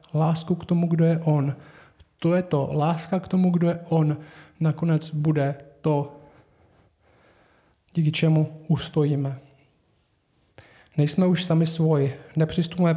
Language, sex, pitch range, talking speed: Czech, male, 145-170 Hz, 120 wpm